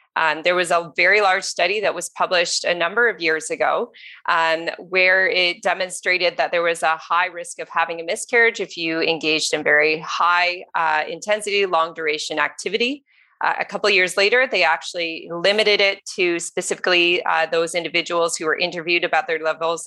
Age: 30-49